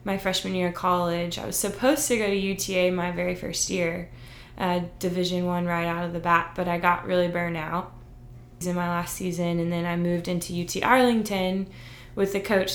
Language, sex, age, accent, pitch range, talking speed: English, female, 20-39, American, 170-190 Hz, 205 wpm